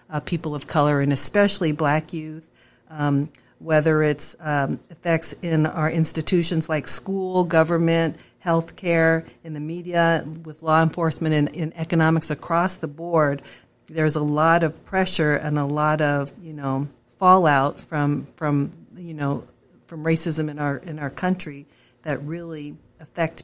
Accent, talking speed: American, 150 wpm